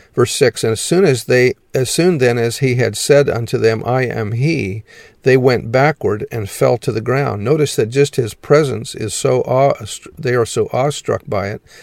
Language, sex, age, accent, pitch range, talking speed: English, male, 50-69, American, 115-140 Hz, 210 wpm